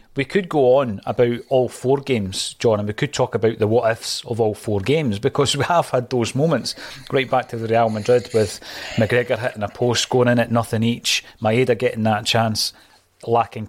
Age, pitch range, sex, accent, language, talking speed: 30-49, 110-135 Hz, male, British, English, 205 wpm